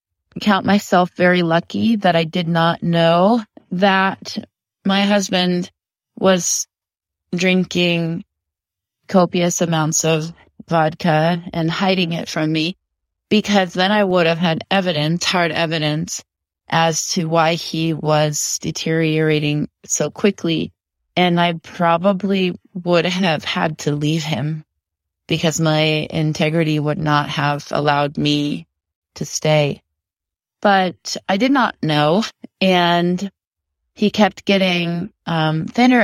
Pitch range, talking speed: 155-190 Hz, 115 wpm